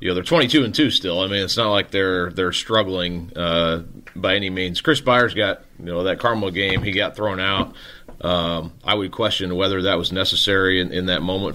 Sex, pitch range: male, 90-110 Hz